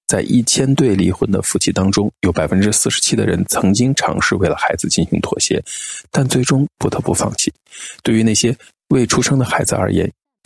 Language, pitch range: Chinese, 95-135 Hz